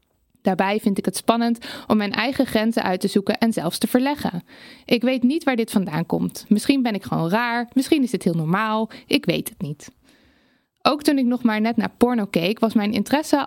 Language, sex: Dutch, female